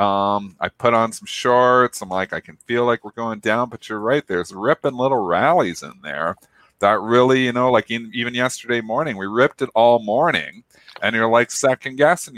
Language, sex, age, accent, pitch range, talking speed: English, male, 40-59, American, 100-125 Hz, 205 wpm